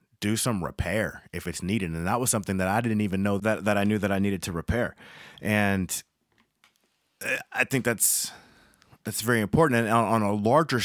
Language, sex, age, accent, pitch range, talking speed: English, male, 30-49, American, 95-120 Hz, 200 wpm